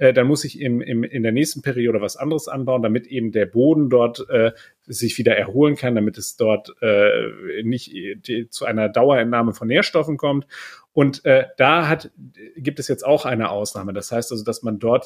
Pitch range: 120-140 Hz